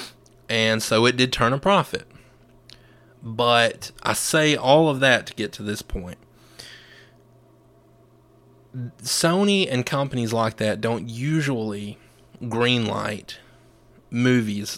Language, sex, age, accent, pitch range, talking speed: English, male, 20-39, American, 110-130 Hz, 110 wpm